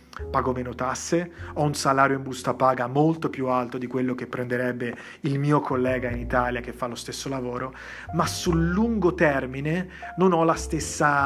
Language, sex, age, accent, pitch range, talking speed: Italian, male, 30-49, native, 130-150 Hz, 180 wpm